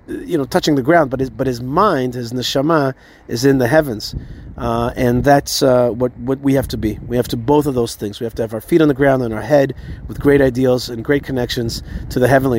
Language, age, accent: English, 30-49, American